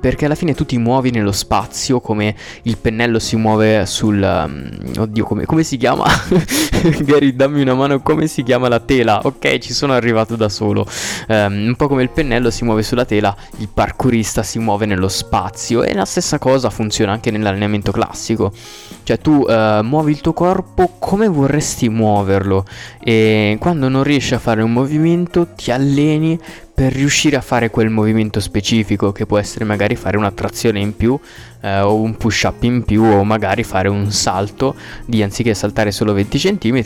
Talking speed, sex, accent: 180 wpm, male, native